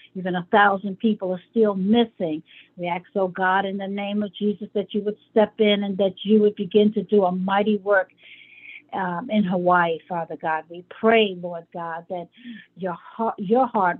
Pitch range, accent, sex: 180-210 Hz, American, female